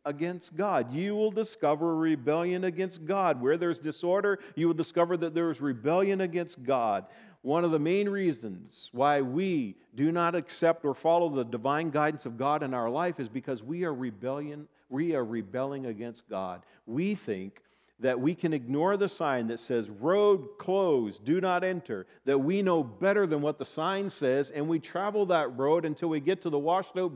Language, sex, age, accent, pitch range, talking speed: English, male, 50-69, American, 135-190 Hz, 190 wpm